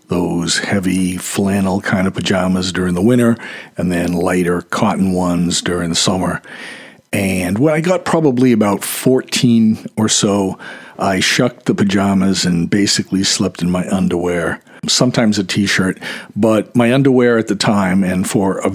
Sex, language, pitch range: male, English, 90-110 Hz